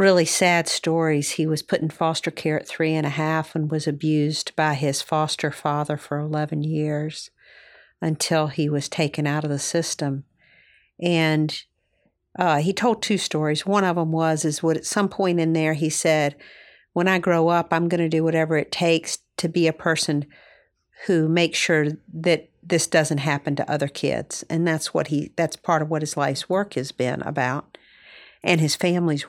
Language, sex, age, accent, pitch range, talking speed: English, female, 50-69, American, 155-175 Hz, 190 wpm